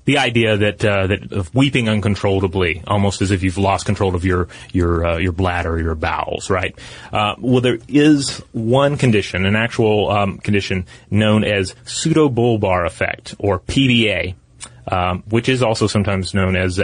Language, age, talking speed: English, 30-49, 170 wpm